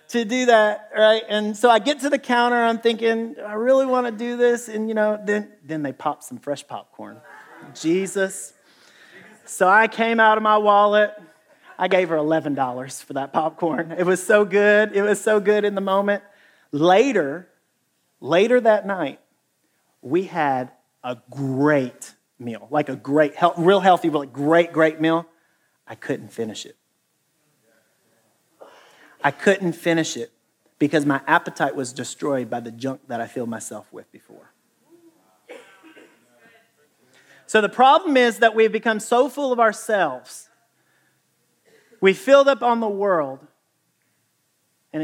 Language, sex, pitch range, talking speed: English, male, 150-220 Hz, 150 wpm